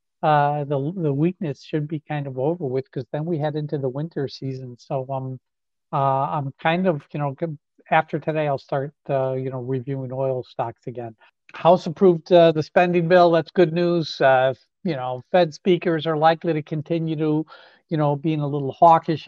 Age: 50-69